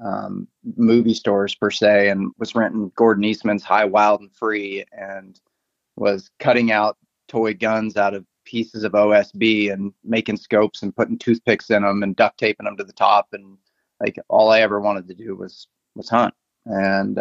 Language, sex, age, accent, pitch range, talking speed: English, male, 30-49, American, 100-110 Hz, 180 wpm